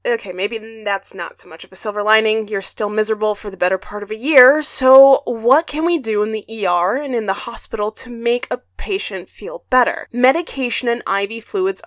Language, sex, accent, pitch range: English, female, American, 205-270 Hz